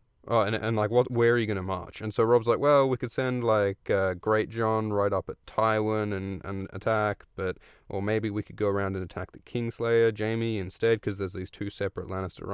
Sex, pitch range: male, 95-115 Hz